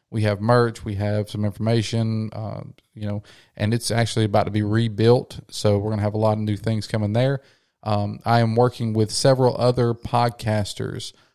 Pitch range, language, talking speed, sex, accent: 105-125 Hz, English, 195 wpm, male, American